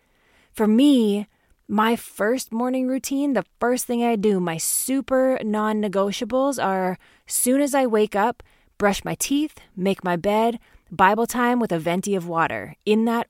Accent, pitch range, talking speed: American, 175-225 Hz, 160 wpm